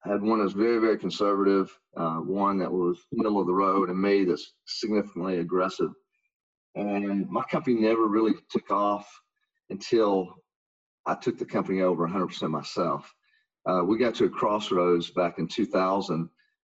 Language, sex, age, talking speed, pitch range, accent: English, male, 40-59, 160 wpm, 85-100 Hz, American